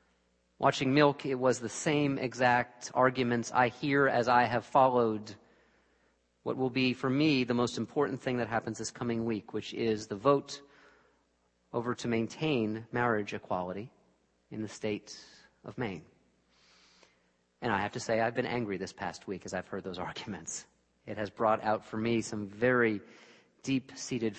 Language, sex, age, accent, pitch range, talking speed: English, male, 40-59, American, 100-125 Hz, 165 wpm